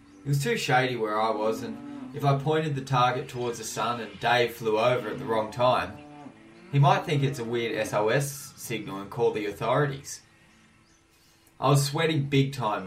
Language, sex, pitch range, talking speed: English, male, 110-140 Hz, 190 wpm